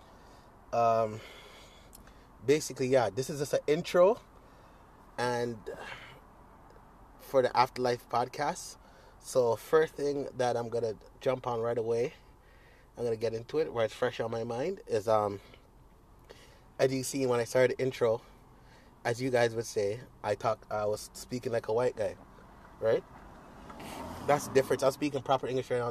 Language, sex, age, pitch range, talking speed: English, male, 30-49, 120-150 Hz, 160 wpm